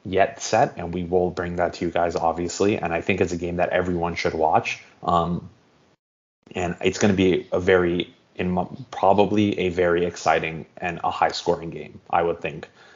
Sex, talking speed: male, 195 wpm